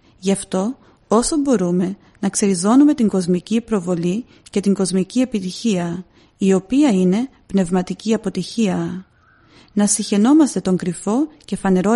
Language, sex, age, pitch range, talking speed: Greek, female, 30-49, 190-230 Hz, 120 wpm